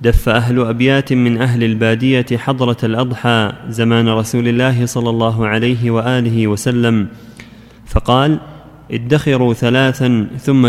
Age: 20-39